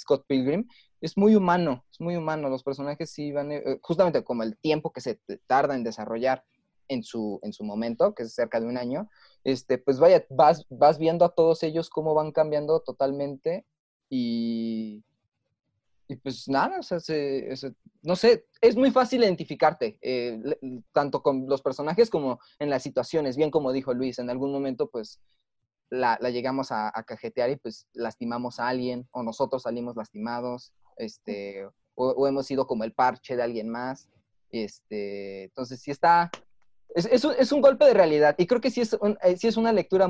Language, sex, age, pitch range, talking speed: Spanish, male, 20-39, 120-170 Hz, 190 wpm